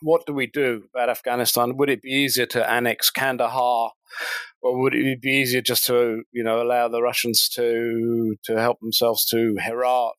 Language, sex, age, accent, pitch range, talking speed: English, male, 40-59, British, 120-150 Hz, 185 wpm